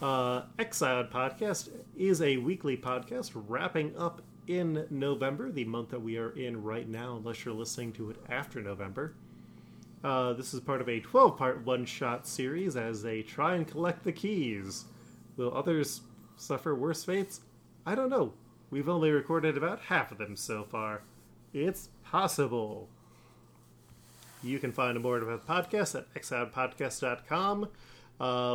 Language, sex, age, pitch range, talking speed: English, male, 30-49, 120-150 Hz, 155 wpm